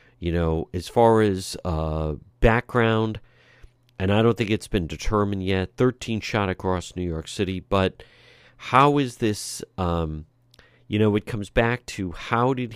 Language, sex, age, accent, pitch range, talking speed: English, male, 50-69, American, 90-120 Hz, 160 wpm